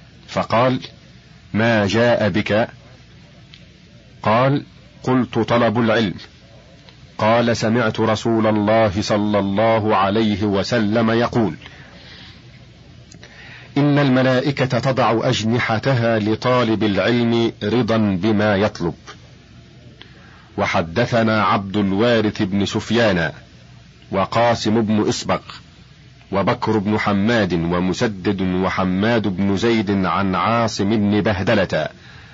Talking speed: 85 wpm